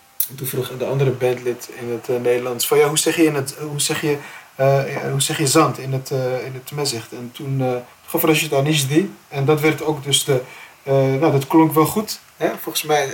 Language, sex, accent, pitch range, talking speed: Dutch, male, Dutch, 125-155 Hz, 185 wpm